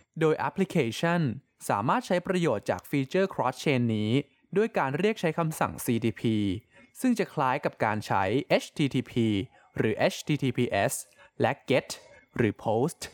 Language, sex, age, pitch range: Thai, male, 20-39, 115-180 Hz